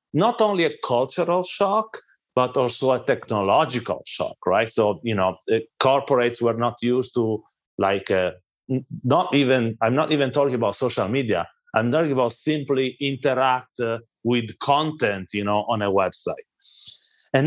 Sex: male